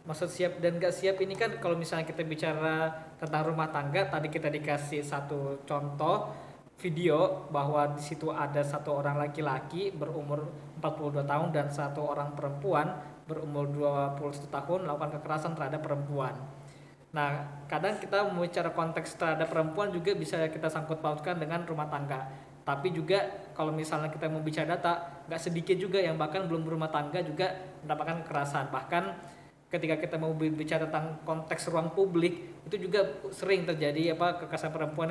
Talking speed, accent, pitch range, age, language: 155 wpm, native, 150-180 Hz, 20-39, Indonesian